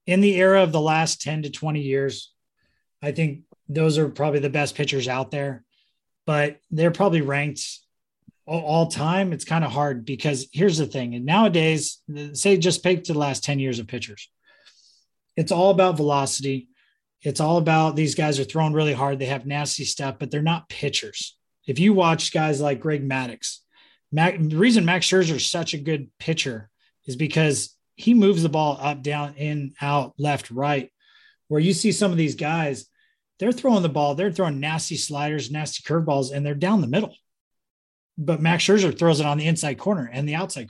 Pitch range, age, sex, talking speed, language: 140-170 Hz, 30-49, male, 190 wpm, English